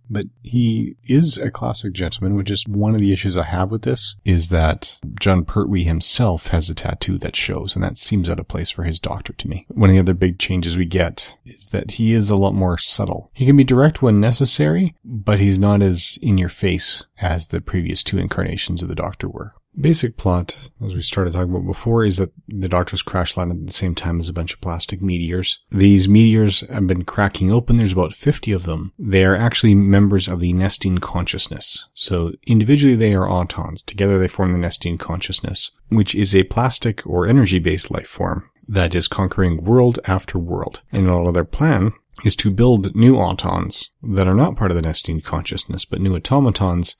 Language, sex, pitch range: English, male, 90-105 Hz